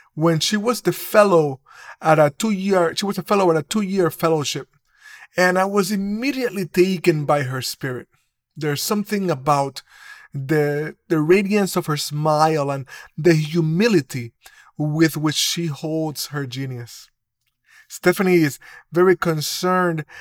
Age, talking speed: 30-49, 135 wpm